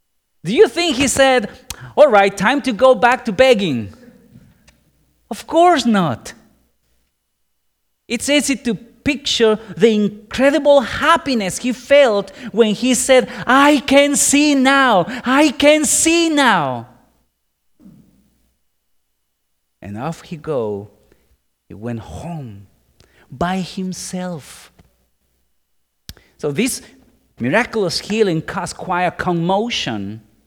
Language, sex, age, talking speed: English, male, 40-59, 105 wpm